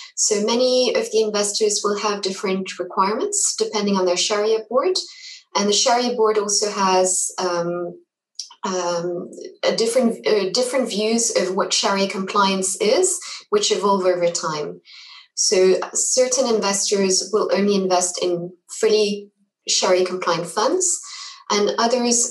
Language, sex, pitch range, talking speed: English, female, 180-225 Hz, 130 wpm